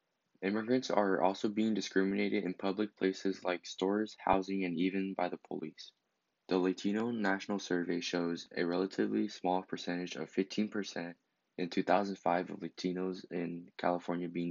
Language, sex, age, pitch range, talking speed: English, male, 20-39, 90-105 Hz, 140 wpm